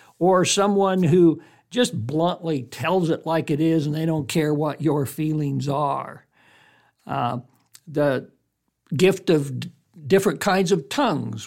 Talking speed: 135 wpm